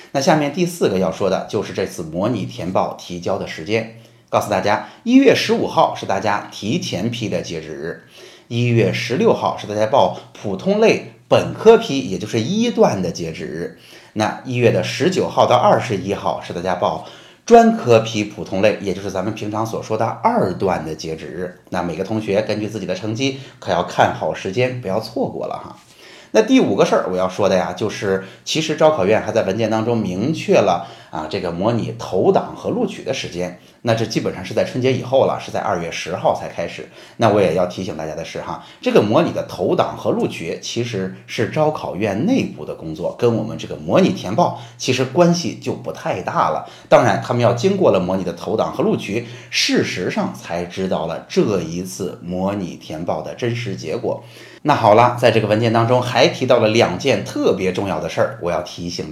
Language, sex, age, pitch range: Chinese, male, 30-49, 95-130 Hz